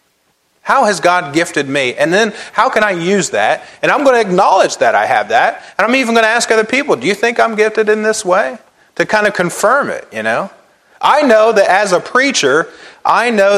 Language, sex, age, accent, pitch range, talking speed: English, male, 30-49, American, 170-215 Hz, 230 wpm